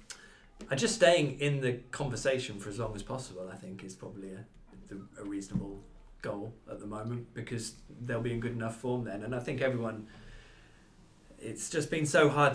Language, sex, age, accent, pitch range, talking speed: English, male, 20-39, British, 100-130 Hz, 185 wpm